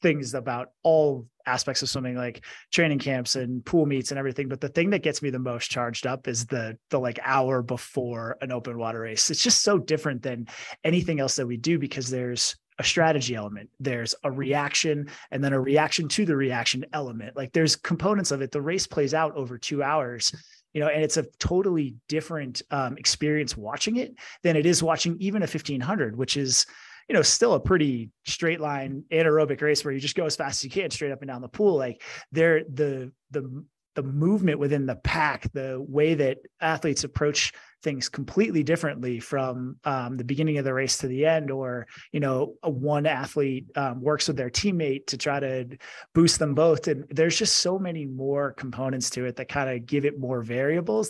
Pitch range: 130-155 Hz